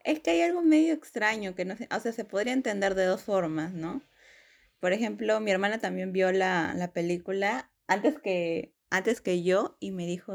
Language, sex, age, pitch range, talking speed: Spanish, female, 20-39, 170-205 Hz, 195 wpm